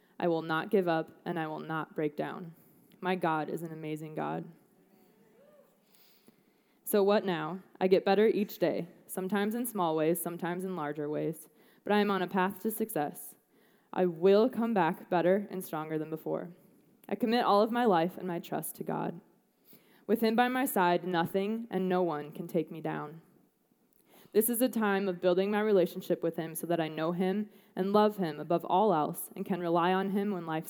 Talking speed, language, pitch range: 200 wpm, English, 165-205 Hz